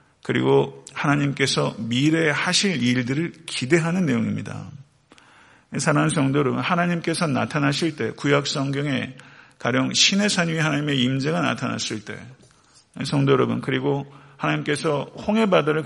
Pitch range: 130-170 Hz